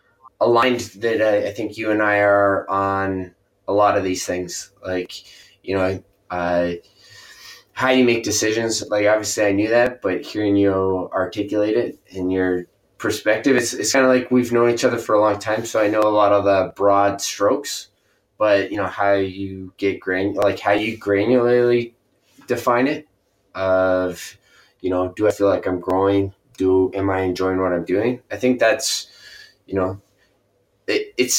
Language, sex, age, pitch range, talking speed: English, male, 20-39, 95-115 Hz, 180 wpm